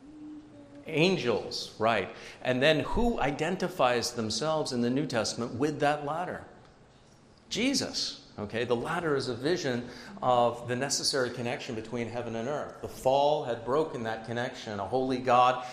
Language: English